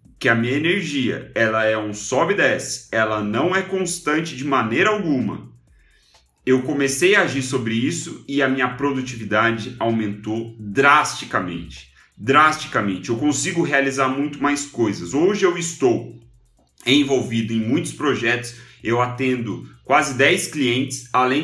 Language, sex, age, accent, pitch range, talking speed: Portuguese, male, 30-49, Brazilian, 115-155 Hz, 135 wpm